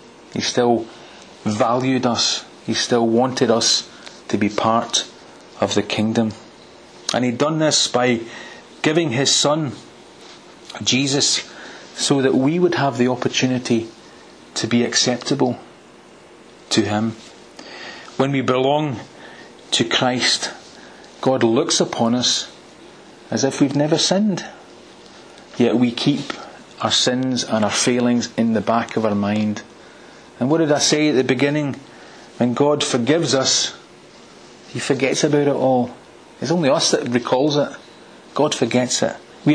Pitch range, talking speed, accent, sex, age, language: 115-145 Hz, 135 wpm, British, male, 40-59, English